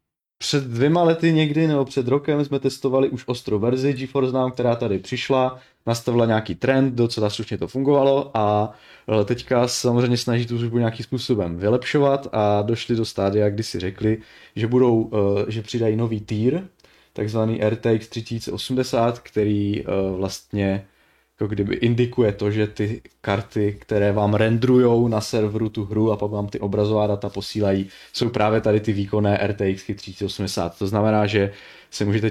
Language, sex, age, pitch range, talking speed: Czech, male, 20-39, 100-120 Hz, 155 wpm